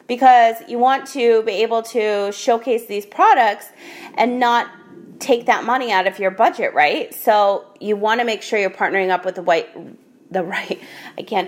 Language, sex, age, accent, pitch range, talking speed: English, female, 30-49, American, 190-245 Hz, 190 wpm